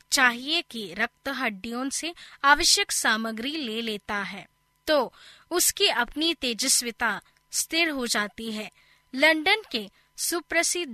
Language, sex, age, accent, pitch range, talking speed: Hindi, female, 20-39, native, 225-285 Hz, 115 wpm